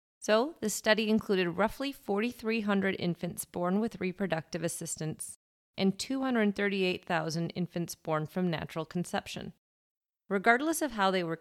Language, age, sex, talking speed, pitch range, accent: English, 30-49, female, 120 wpm, 165-210 Hz, American